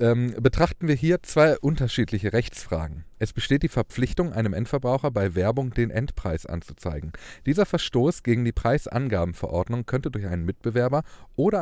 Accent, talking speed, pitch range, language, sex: German, 140 wpm, 95-125 Hz, German, male